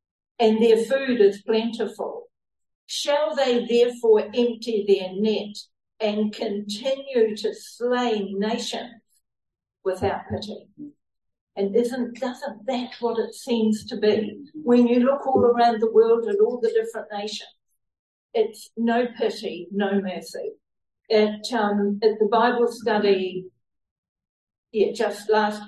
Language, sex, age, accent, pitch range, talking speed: English, female, 50-69, Australian, 200-250 Hz, 125 wpm